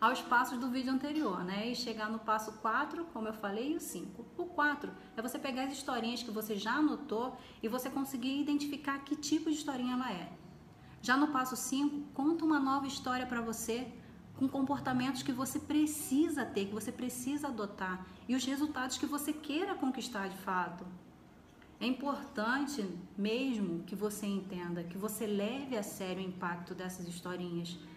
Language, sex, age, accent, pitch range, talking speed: Portuguese, female, 30-49, Brazilian, 205-270 Hz, 175 wpm